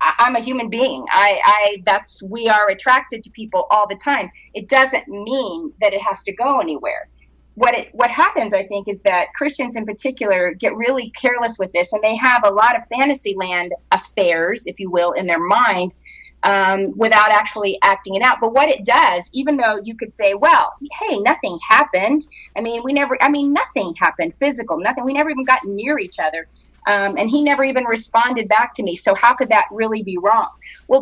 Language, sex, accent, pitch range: English, female, American, 200-275 Hz